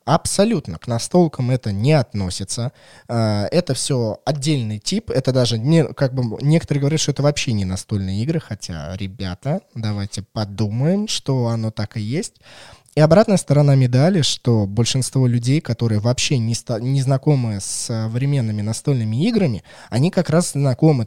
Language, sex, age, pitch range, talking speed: Russian, male, 20-39, 110-145 Hz, 140 wpm